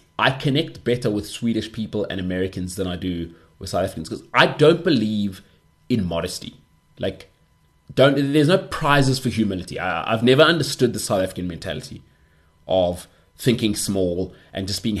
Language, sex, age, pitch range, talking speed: English, male, 30-49, 95-145 Hz, 165 wpm